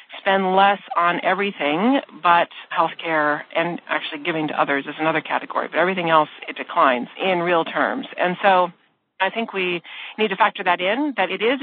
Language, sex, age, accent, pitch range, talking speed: English, female, 40-59, American, 155-195 Hz, 185 wpm